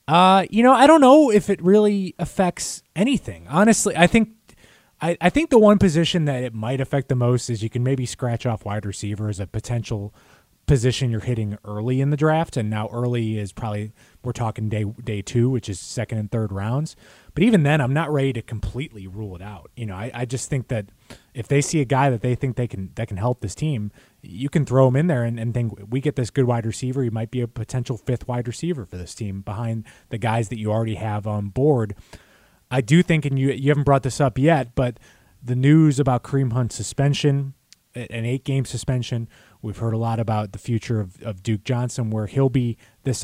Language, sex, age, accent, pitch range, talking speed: English, male, 20-39, American, 110-135 Hz, 230 wpm